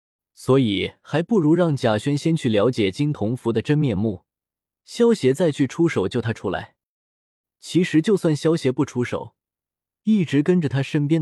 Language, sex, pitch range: Chinese, male, 105-160 Hz